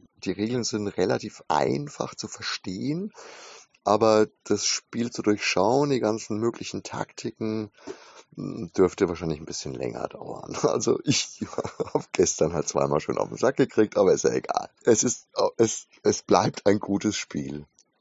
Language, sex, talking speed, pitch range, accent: German, male, 145 wpm, 95-115 Hz, German